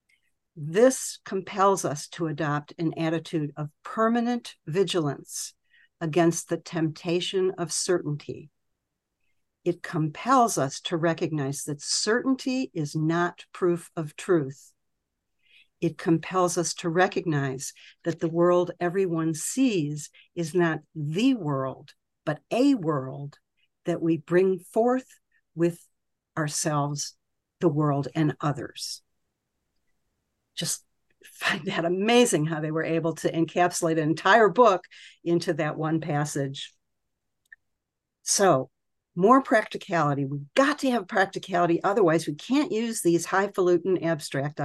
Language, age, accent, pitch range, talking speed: English, 50-69, American, 155-185 Hz, 115 wpm